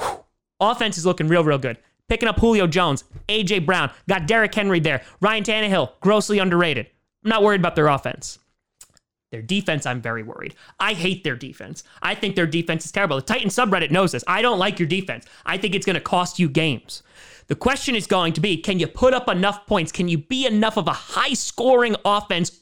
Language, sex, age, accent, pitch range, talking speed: English, male, 30-49, American, 165-230 Hz, 210 wpm